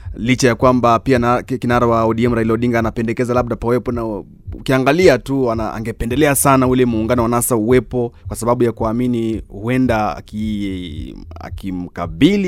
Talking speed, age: 140 wpm, 30-49